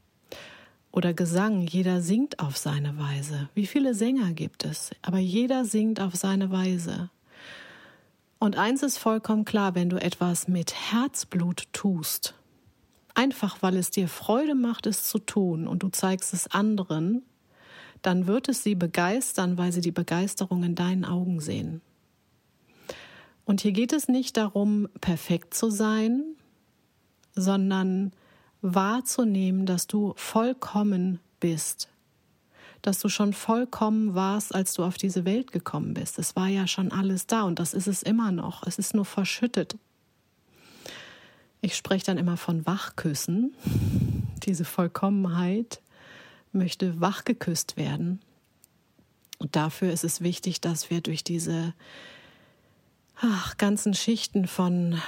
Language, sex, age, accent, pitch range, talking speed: German, female, 40-59, German, 175-215 Hz, 135 wpm